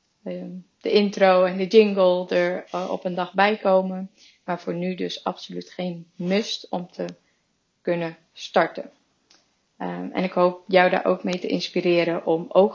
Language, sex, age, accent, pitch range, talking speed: Dutch, female, 30-49, Dutch, 175-195 Hz, 155 wpm